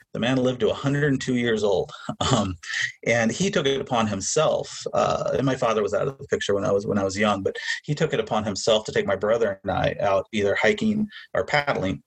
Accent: American